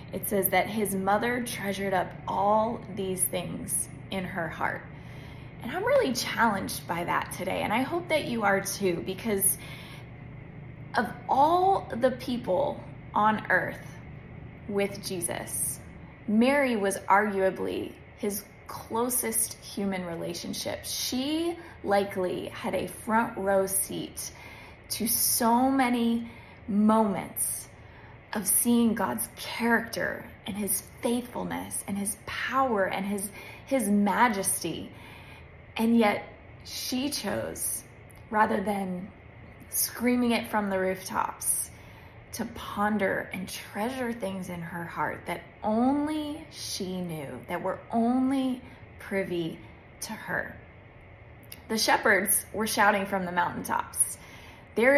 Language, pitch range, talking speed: English, 185-235 Hz, 115 wpm